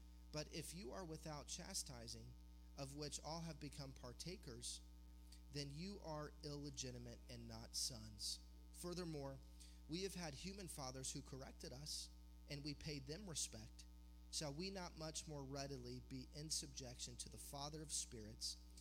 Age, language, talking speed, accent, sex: 30-49, English, 150 wpm, American, male